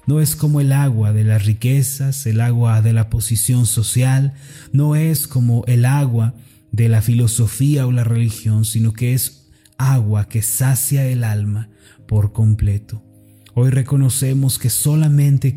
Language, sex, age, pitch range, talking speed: Spanish, male, 30-49, 110-135 Hz, 150 wpm